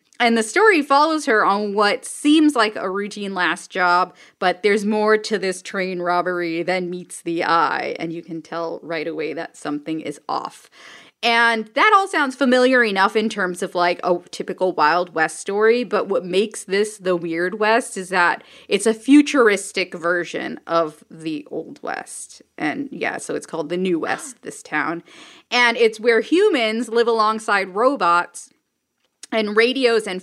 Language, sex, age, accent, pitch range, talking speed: English, female, 20-39, American, 175-235 Hz, 170 wpm